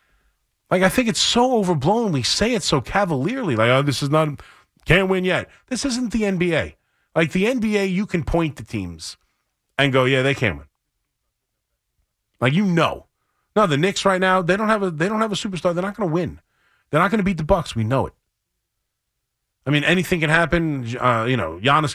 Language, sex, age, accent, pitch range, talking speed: English, male, 30-49, American, 110-170 Hz, 215 wpm